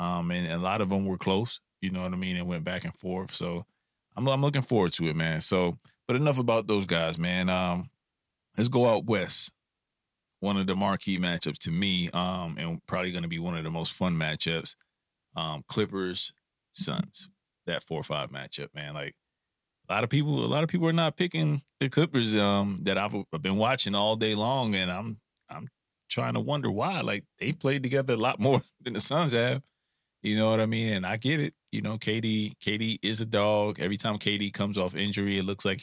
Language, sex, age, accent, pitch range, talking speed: English, male, 30-49, American, 90-115 Hz, 225 wpm